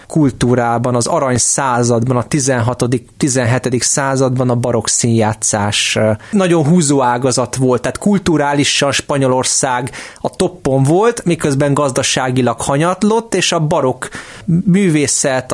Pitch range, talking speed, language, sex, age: 120-145 Hz, 110 wpm, Hungarian, male, 20-39